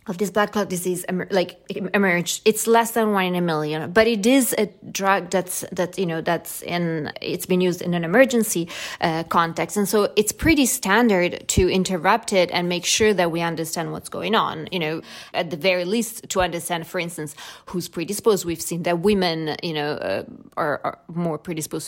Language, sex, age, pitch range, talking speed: English, female, 20-39, 170-210 Hz, 200 wpm